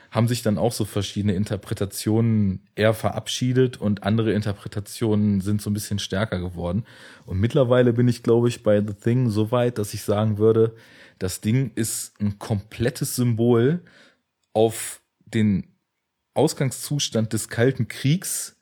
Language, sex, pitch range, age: German, male, 100-115 Hz, 30-49